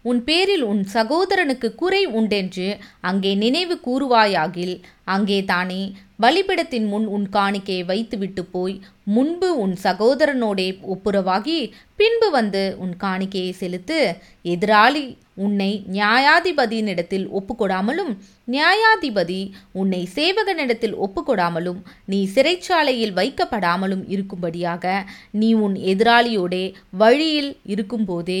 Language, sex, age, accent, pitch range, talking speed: Tamil, female, 20-39, native, 190-250 Hz, 95 wpm